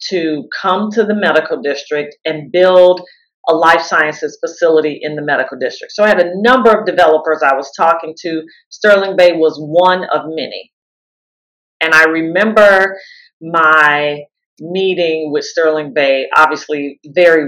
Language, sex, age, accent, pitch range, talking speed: English, female, 40-59, American, 155-200 Hz, 150 wpm